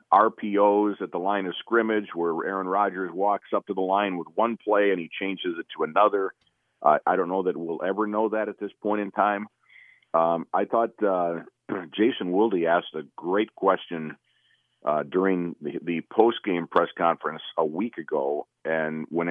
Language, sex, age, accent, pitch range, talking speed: English, male, 50-69, American, 85-105 Hz, 185 wpm